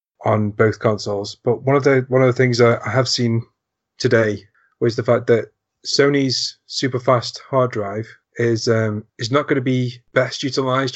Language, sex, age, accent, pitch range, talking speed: English, male, 30-49, British, 110-125 Hz, 185 wpm